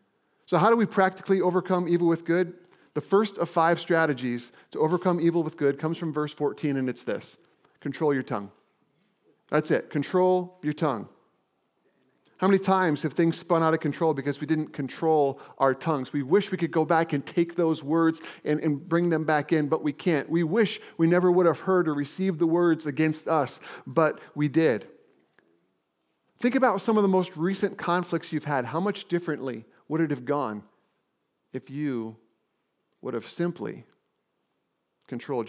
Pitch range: 140-175 Hz